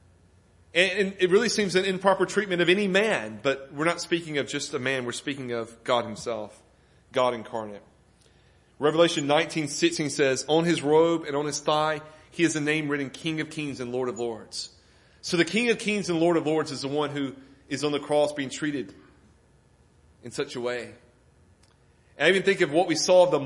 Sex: male